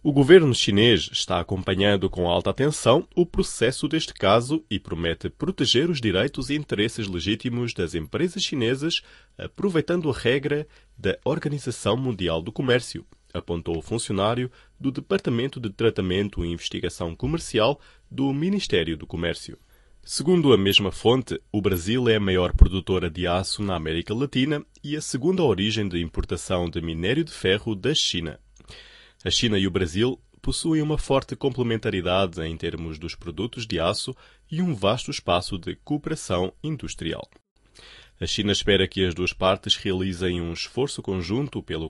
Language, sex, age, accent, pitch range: Chinese, male, 20-39, Brazilian, 90-135 Hz